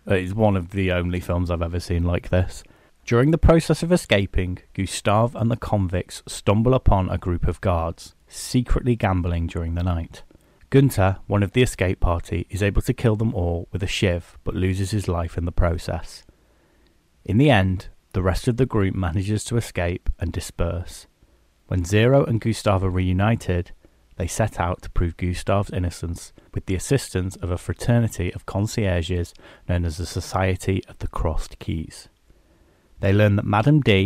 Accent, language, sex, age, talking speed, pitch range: British, English, male, 30-49, 175 wpm, 90-110 Hz